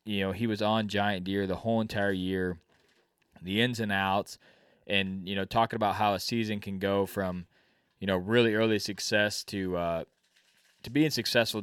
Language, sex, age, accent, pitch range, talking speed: English, male, 20-39, American, 90-105 Hz, 185 wpm